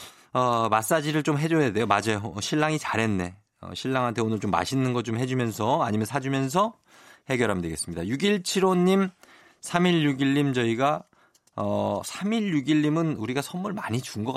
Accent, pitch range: native, 110-175 Hz